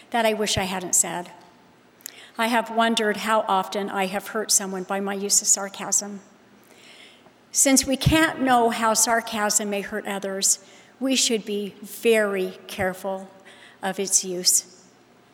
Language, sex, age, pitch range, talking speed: English, female, 50-69, 195-240 Hz, 145 wpm